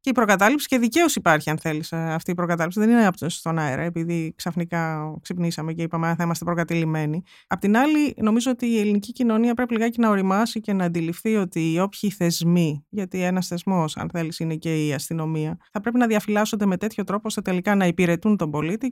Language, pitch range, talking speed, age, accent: Greek, 165-220 Hz, 205 wpm, 20-39, native